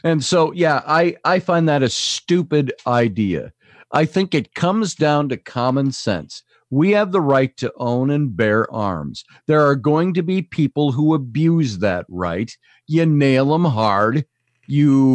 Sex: male